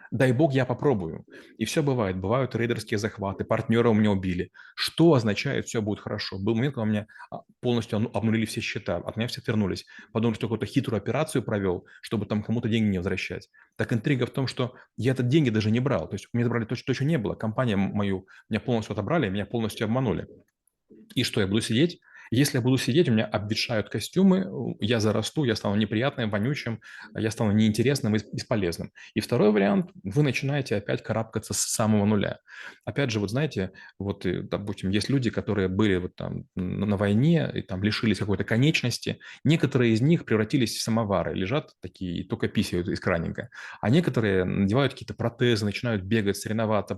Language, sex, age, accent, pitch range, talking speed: Russian, male, 30-49, native, 105-125 Hz, 190 wpm